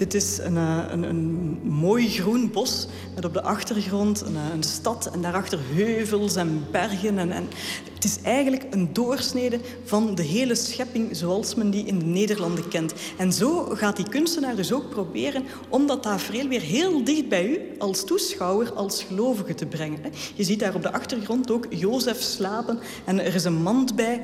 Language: Dutch